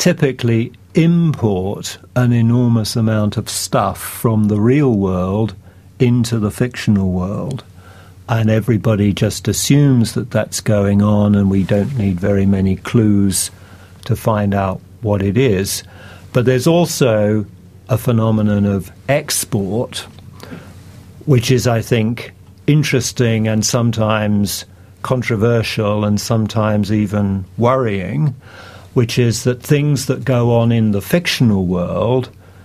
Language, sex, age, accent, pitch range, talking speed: English, male, 50-69, British, 100-120 Hz, 120 wpm